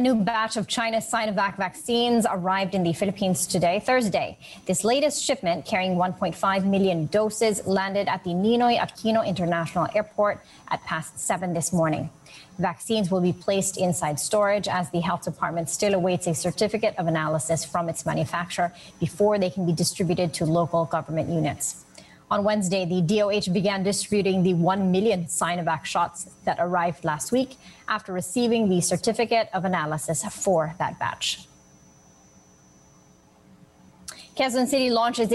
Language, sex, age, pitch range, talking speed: English, female, 30-49, 170-215 Hz, 150 wpm